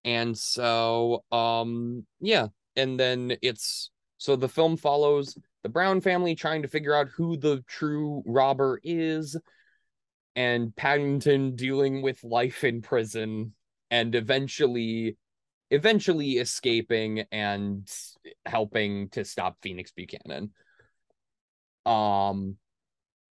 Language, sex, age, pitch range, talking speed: English, male, 20-39, 115-170 Hz, 105 wpm